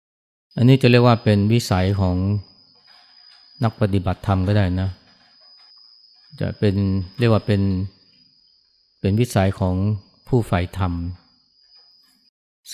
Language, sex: Thai, male